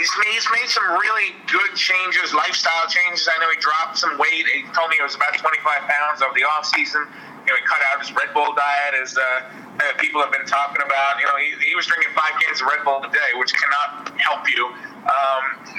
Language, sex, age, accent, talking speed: English, male, 30-49, American, 235 wpm